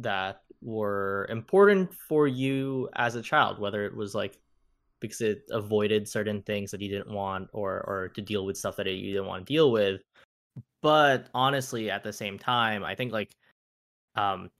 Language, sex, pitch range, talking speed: English, male, 100-125 Hz, 180 wpm